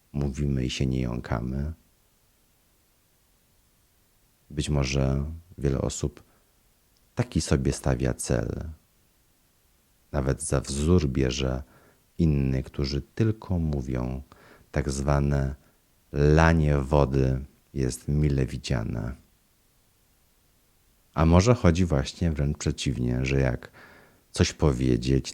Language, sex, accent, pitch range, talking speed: Polish, male, native, 70-85 Hz, 90 wpm